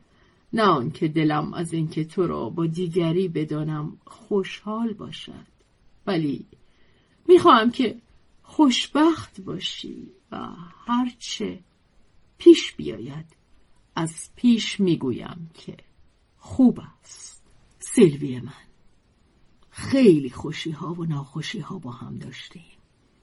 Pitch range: 160-210 Hz